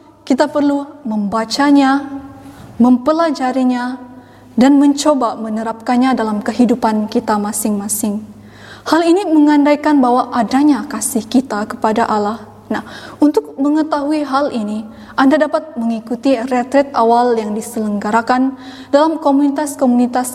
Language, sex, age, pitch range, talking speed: Indonesian, female, 20-39, 225-280 Hz, 100 wpm